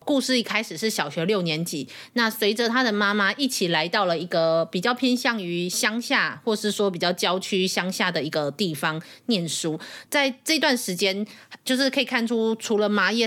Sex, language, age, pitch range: female, Chinese, 30-49, 175-235 Hz